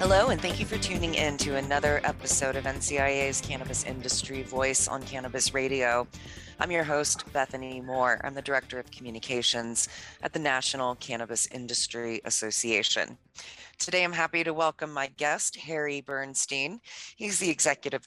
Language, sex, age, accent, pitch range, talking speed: English, female, 30-49, American, 120-150 Hz, 155 wpm